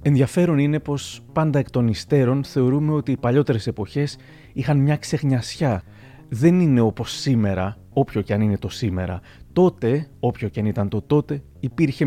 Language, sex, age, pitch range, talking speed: Greek, male, 30-49, 110-140 Hz, 165 wpm